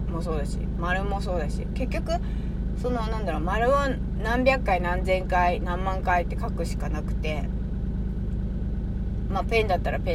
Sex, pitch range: female, 70-75 Hz